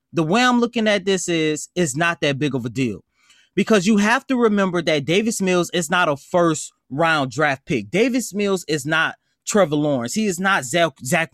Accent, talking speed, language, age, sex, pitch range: American, 205 wpm, English, 20-39, male, 155-215 Hz